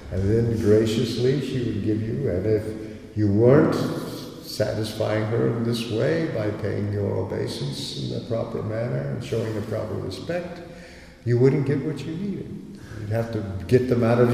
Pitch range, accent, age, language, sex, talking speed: 105-130 Hz, American, 60-79, English, male, 175 wpm